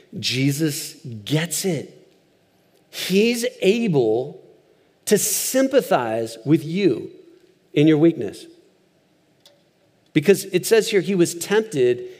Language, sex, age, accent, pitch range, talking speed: English, male, 40-59, American, 135-220 Hz, 95 wpm